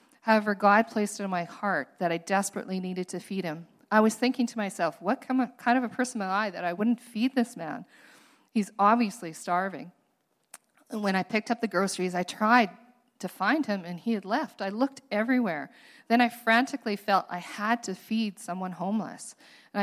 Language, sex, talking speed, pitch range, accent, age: English, female, 195 wpm, 195-240 Hz, American, 40-59